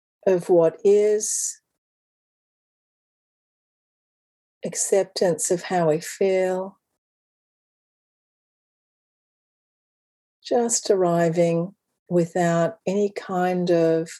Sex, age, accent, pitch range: female, 60-79, Australian, 175-205 Hz